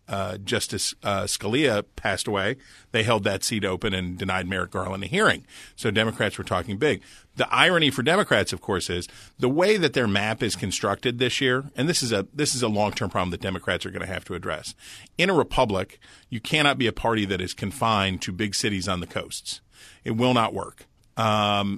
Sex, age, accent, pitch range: male, 40-59, American, 100-120 Hz